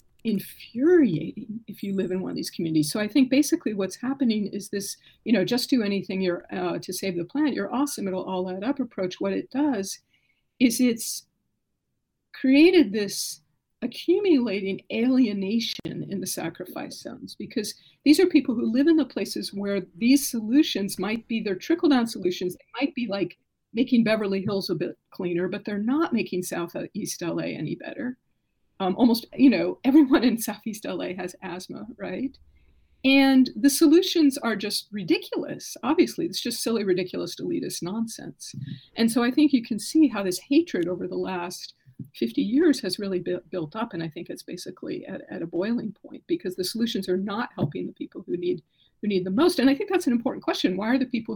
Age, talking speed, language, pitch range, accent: 50-69, 190 wpm, English, 185-275 Hz, American